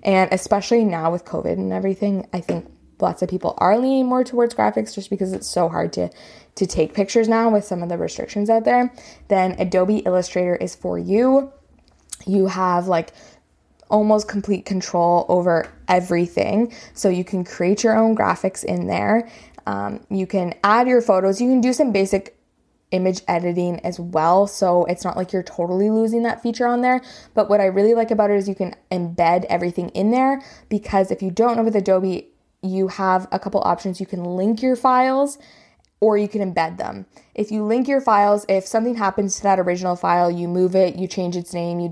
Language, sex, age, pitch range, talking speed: English, female, 20-39, 175-210 Hz, 200 wpm